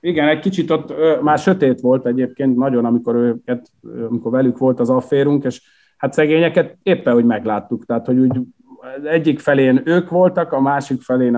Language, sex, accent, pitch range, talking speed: English, male, Finnish, 105-135 Hz, 170 wpm